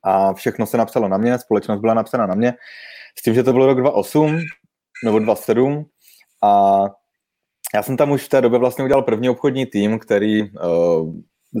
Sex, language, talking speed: male, Czech, 180 wpm